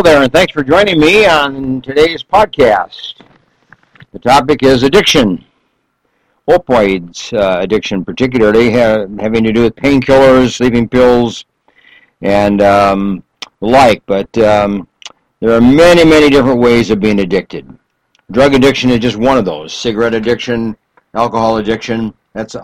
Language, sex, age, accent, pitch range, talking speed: English, male, 60-79, American, 110-130 Hz, 140 wpm